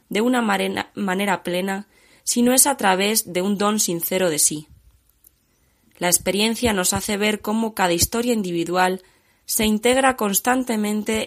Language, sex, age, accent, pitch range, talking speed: Spanish, female, 20-39, Spanish, 175-220 Hz, 145 wpm